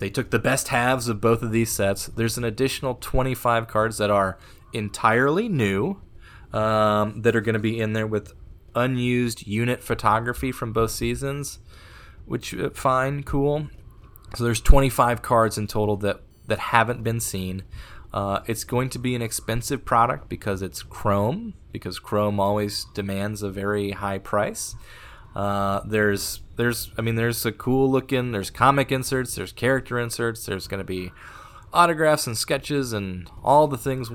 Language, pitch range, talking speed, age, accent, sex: English, 100-125 Hz, 165 wpm, 20-39, American, male